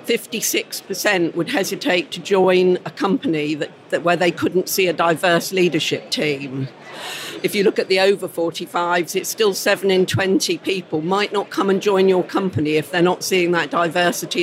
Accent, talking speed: British, 190 wpm